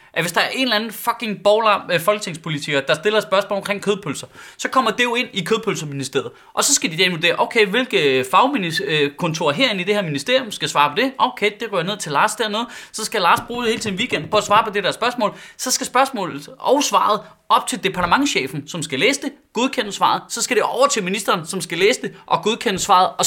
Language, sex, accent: Danish, male, native